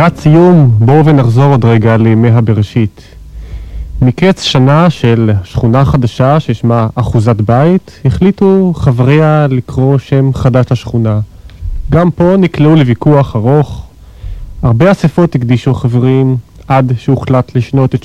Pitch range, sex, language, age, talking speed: 115-140 Hz, male, Hebrew, 30-49, 115 wpm